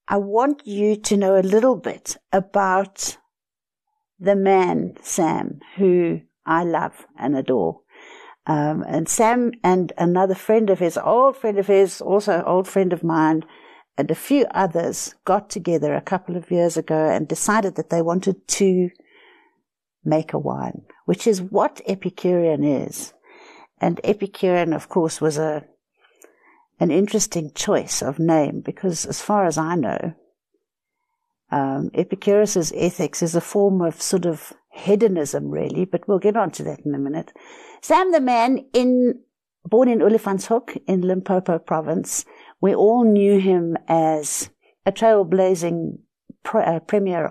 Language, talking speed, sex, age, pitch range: English, 150 wpm, female, 60-79, 165-220 Hz